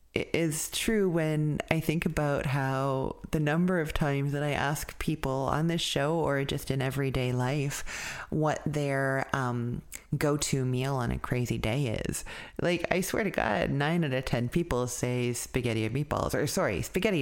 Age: 30-49